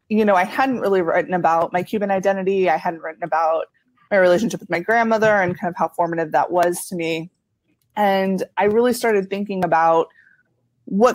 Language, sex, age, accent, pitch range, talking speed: English, female, 20-39, American, 170-195 Hz, 190 wpm